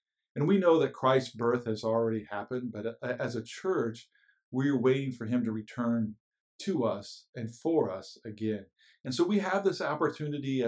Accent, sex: American, male